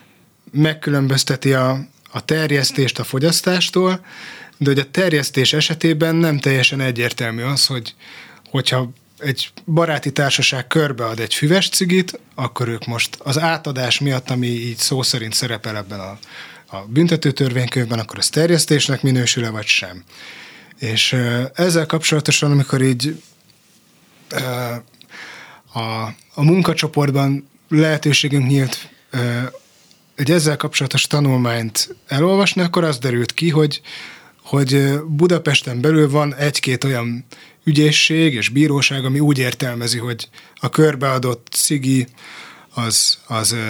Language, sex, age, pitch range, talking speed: Hungarian, male, 20-39, 125-155 Hz, 115 wpm